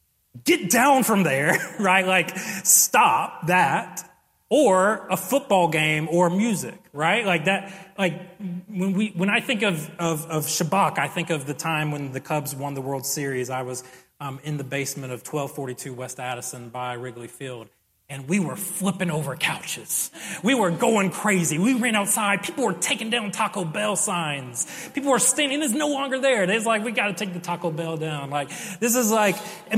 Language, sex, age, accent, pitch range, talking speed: English, male, 30-49, American, 140-200 Hz, 190 wpm